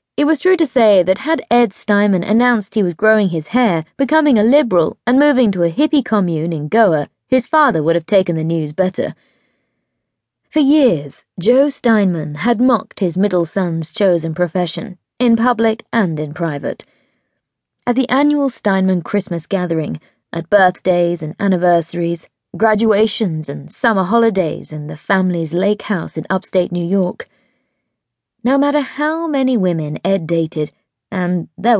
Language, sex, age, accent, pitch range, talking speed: English, female, 20-39, British, 170-240 Hz, 155 wpm